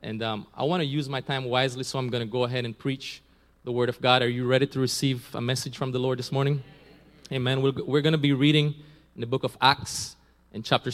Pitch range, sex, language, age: 105-150 Hz, male, English, 20-39